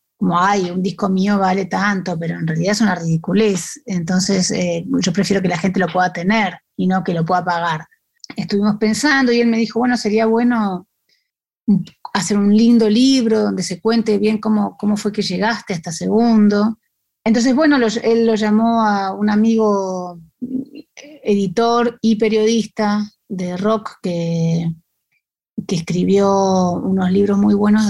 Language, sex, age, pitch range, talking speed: Spanish, female, 30-49, 185-220 Hz, 155 wpm